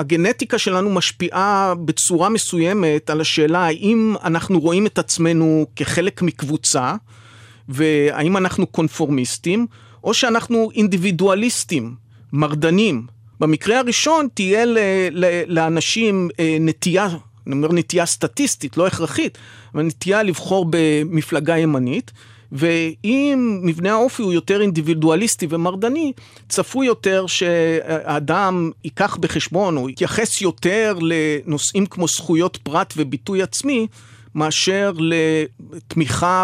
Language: Hebrew